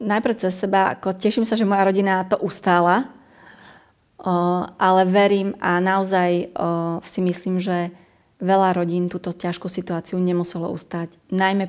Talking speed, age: 130 wpm, 30-49